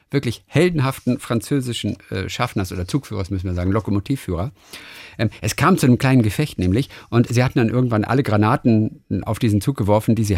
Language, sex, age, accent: German, male, 50-69, German